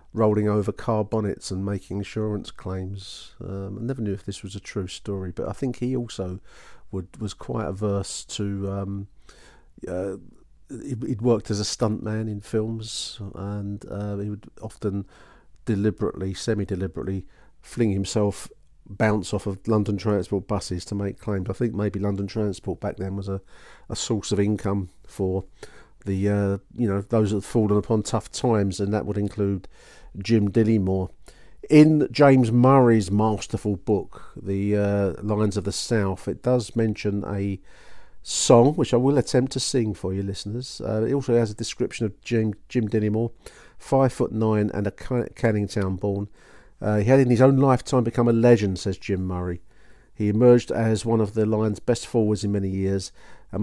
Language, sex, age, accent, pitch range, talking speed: English, male, 40-59, British, 100-115 Hz, 175 wpm